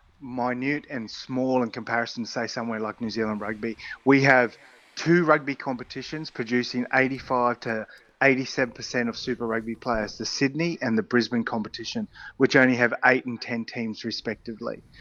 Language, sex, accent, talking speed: English, male, Australian, 160 wpm